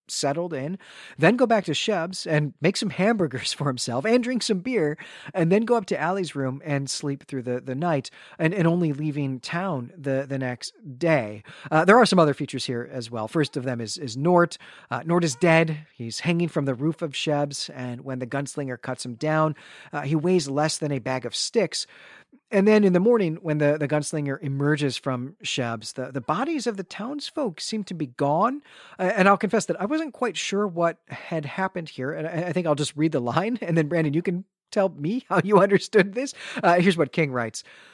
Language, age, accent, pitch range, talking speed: English, 40-59, American, 135-185 Hz, 225 wpm